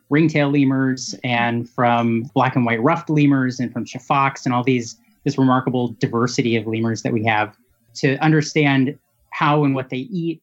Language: English